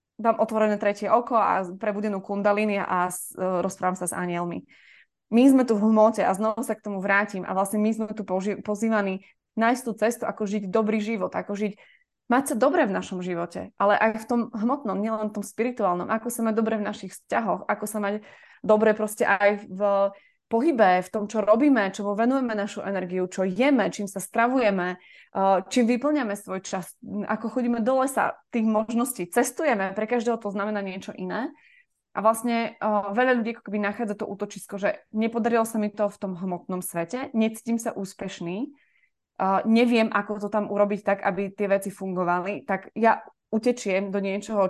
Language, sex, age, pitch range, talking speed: Slovak, female, 20-39, 195-225 Hz, 175 wpm